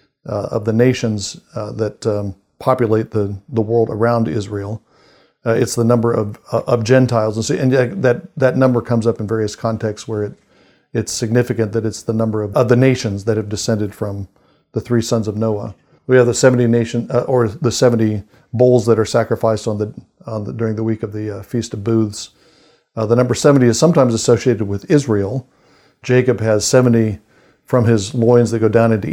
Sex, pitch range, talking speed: male, 110-125 Hz, 200 wpm